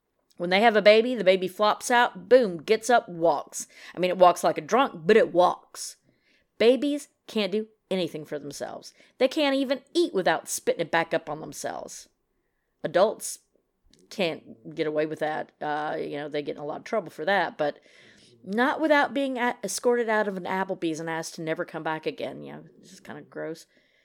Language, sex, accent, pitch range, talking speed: English, female, American, 165-245 Hz, 200 wpm